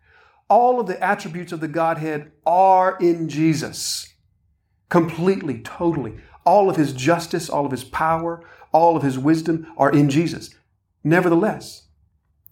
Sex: male